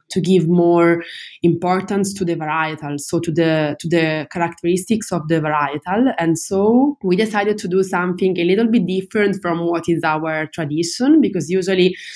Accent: Italian